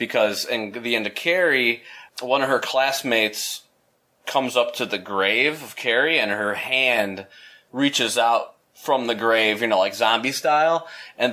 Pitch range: 105-135 Hz